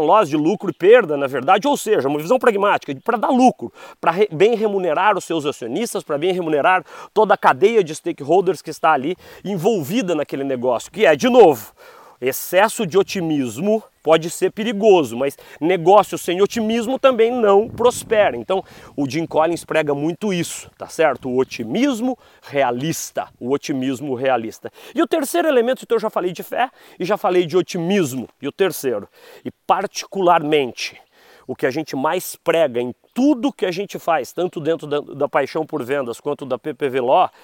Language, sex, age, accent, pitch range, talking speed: Portuguese, male, 40-59, Brazilian, 150-220 Hz, 175 wpm